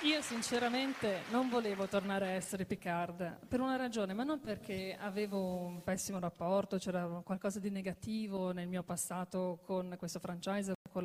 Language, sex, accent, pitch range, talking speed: Italian, female, native, 180-225 Hz, 160 wpm